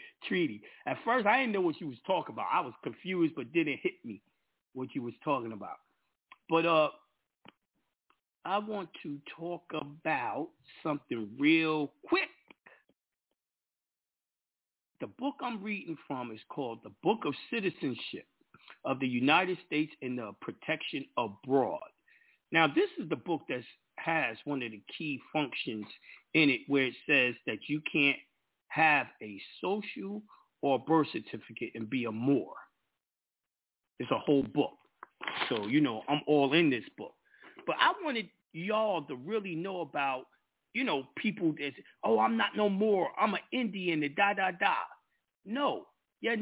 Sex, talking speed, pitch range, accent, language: male, 155 wpm, 140-210 Hz, American, English